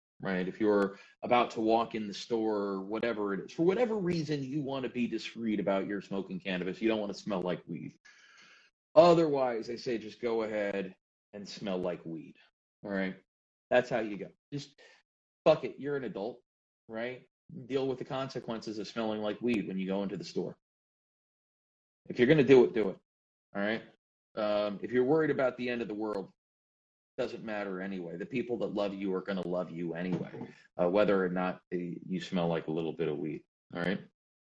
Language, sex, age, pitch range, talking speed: English, male, 30-49, 95-130 Hz, 205 wpm